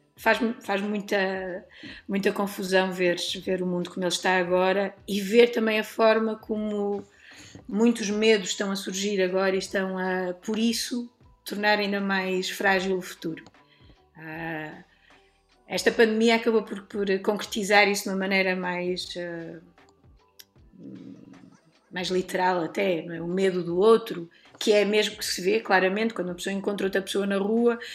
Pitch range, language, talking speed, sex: 180-210 Hz, Portuguese, 145 wpm, female